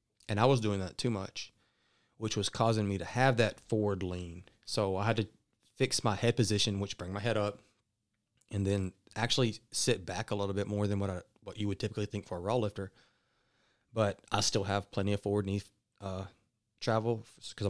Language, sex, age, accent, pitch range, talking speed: English, male, 30-49, American, 100-115 Hz, 205 wpm